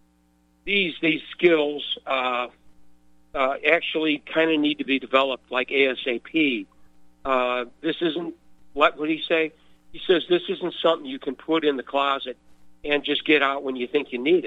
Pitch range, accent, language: 115-150 Hz, American, English